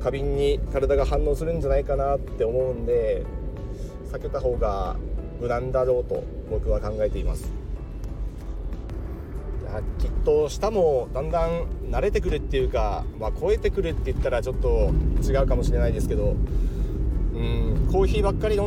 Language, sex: Japanese, male